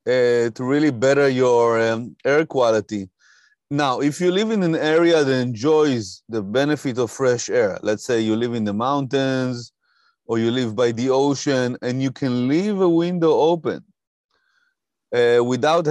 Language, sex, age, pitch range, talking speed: English, male, 30-49, 125-160 Hz, 165 wpm